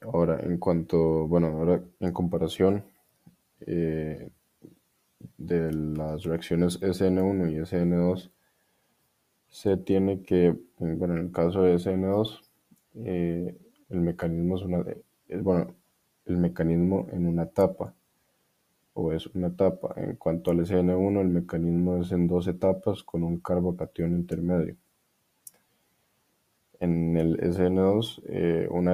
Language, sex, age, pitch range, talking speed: Spanish, male, 20-39, 85-95 Hz, 120 wpm